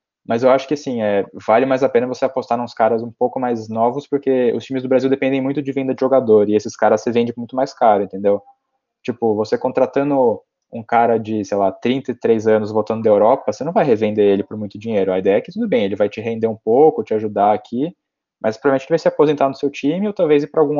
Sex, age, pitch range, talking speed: male, 20-39, 110-140 Hz, 250 wpm